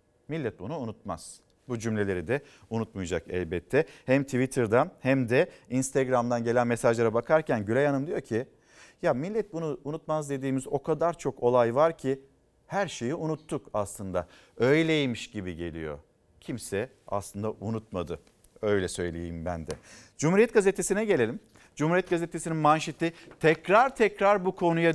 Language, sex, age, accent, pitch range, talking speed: Turkish, male, 50-69, native, 125-195 Hz, 130 wpm